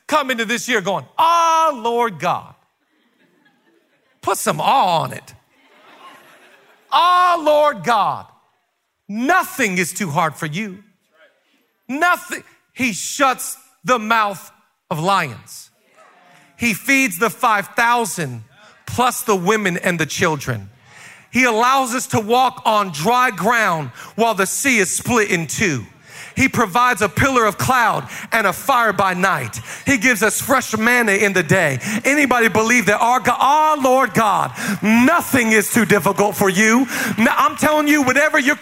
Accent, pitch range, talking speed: American, 200-265 Hz, 145 wpm